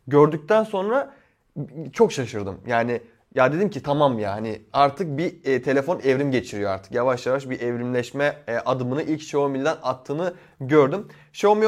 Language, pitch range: Turkish, 130-180 Hz